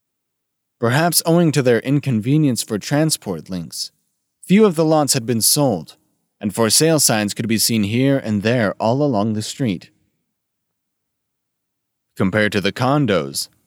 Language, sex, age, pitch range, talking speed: English, male, 30-49, 100-130 Hz, 145 wpm